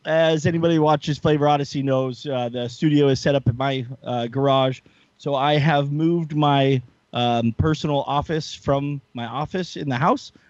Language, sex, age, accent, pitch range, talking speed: English, male, 30-49, American, 120-155 Hz, 175 wpm